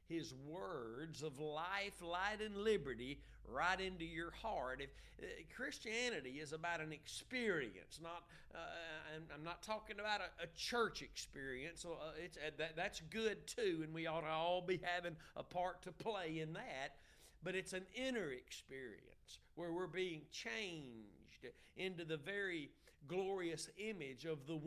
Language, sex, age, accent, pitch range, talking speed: English, male, 50-69, American, 150-190 Hz, 160 wpm